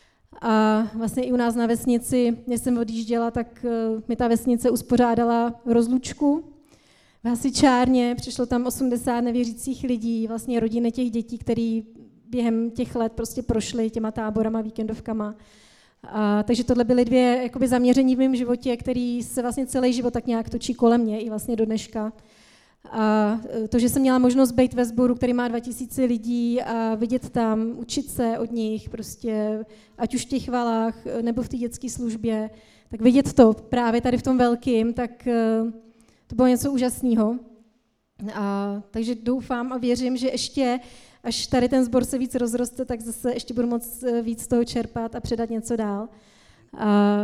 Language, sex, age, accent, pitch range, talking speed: Czech, female, 30-49, native, 230-250 Hz, 165 wpm